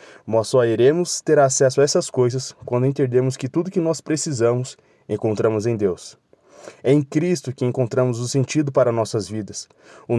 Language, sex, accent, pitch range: Portuguese, male, Brazilian, 125-145 Hz